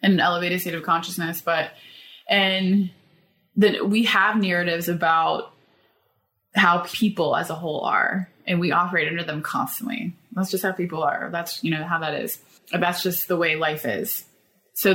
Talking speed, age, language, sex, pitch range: 175 wpm, 20-39, English, female, 170-200 Hz